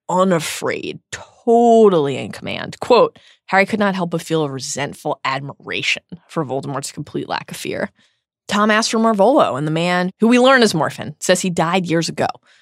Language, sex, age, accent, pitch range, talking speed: English, female, 20-39, American, 155-210 Hz, 175 wpm